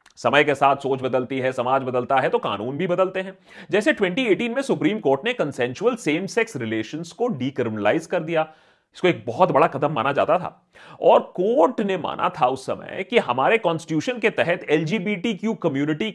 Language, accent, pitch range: Hindi, native, 140-230 Hz